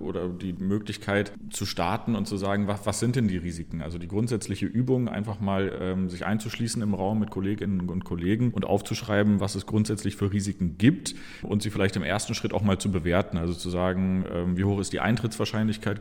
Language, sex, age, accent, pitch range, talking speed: German, male, 30-49, German, 95-110 Hz, 205 wpm